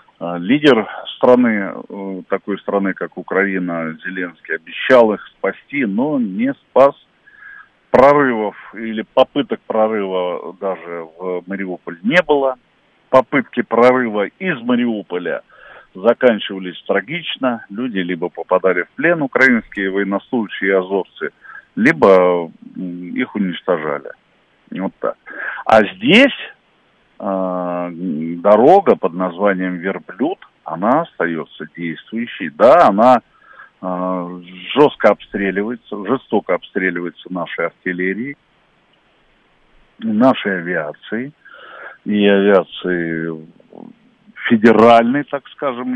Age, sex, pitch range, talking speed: 50-69, male, 90-125 Hz, 85 wpm